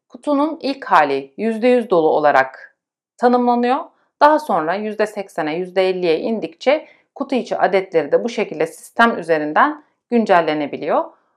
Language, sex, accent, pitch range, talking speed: Turkish, female, native, 180-245 Hz, 110 wpm